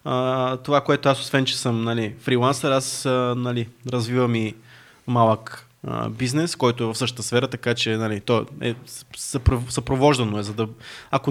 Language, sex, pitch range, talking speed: Bulgarian, male, 120-140 Hz, 165 wpm